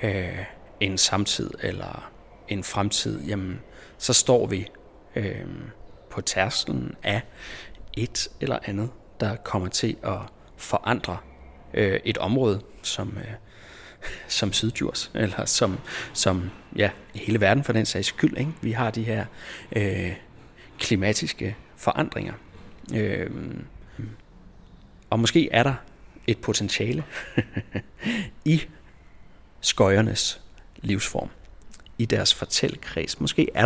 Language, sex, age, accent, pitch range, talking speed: Danish, male, 30-49, native, 95-115 Hz, 95 wpm